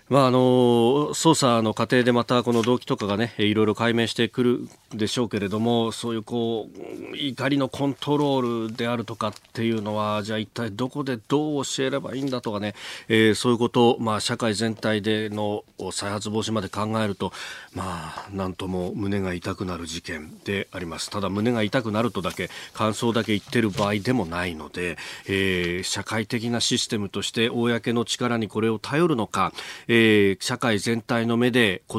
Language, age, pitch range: Japanese, 40-59, 105-125 Hz